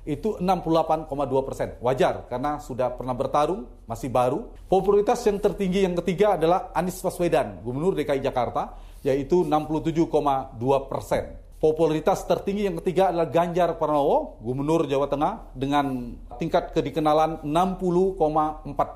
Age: 40-59